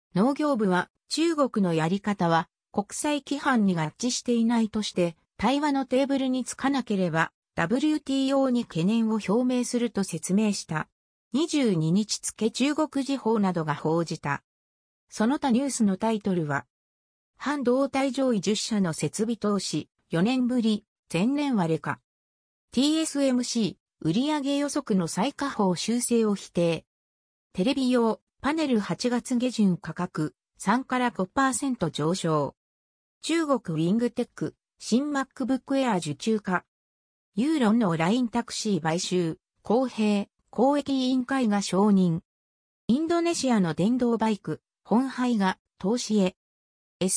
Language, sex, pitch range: Japanese, female, 175-260 Hz